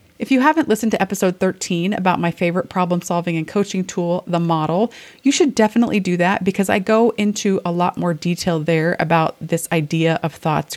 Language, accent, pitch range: English, American, 170-220 Hz